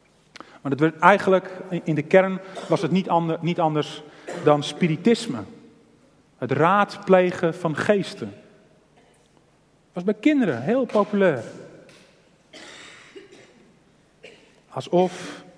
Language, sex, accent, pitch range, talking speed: Dutch, male, Dutch, 155-205 Hz, 100 wpm